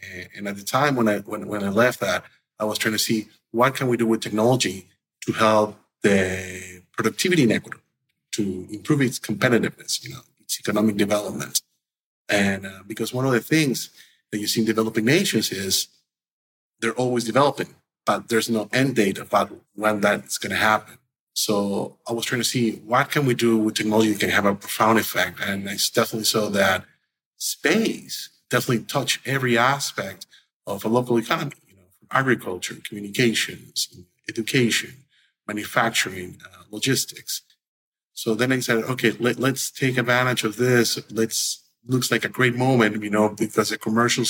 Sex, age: male, 30-49